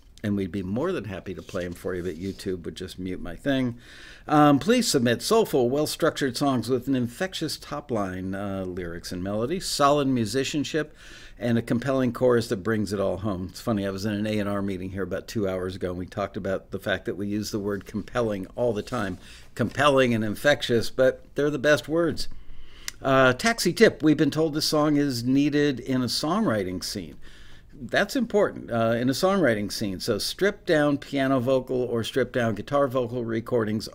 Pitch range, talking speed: 105-140 Hz, 200 wpm